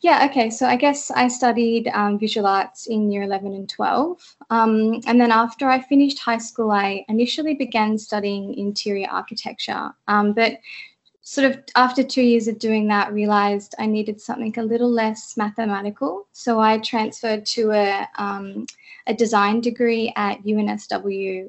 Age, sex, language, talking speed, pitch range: 20-39, female, English, 160 wpm, 205-240 Hz